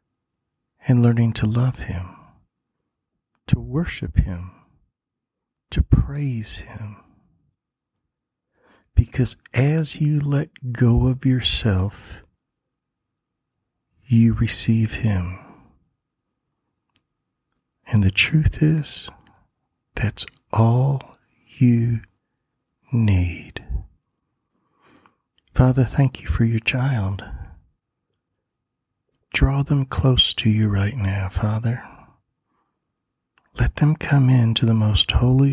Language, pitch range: English, 100-125 Hz